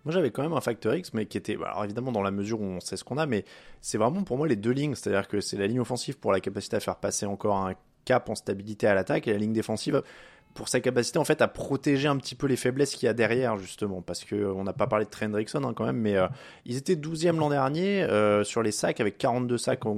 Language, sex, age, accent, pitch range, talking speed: French, male, 20-39, French, 105-130 Hz, 290 wpm